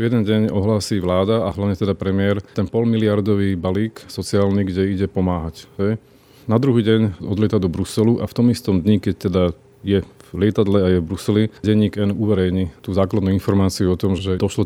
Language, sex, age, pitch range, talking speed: Slovak, male, 30-49, 95-110 Hz, 185 wpm